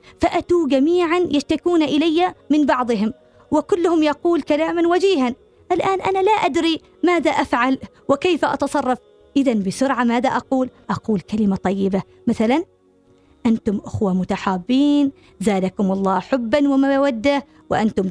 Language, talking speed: Arabic, 115 wpm